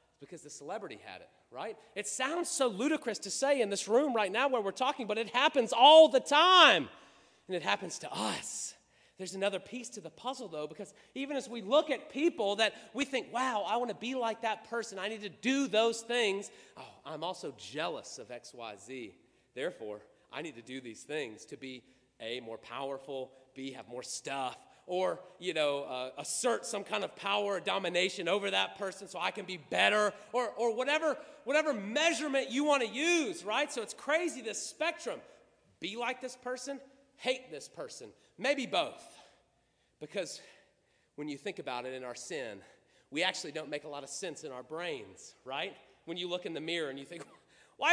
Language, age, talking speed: English, 30-49, 200 wpm